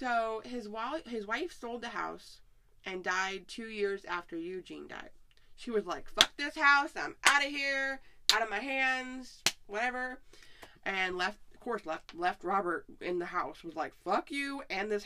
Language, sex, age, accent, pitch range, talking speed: English, female, 20-39, American, 180-255 Hz, 185 wpm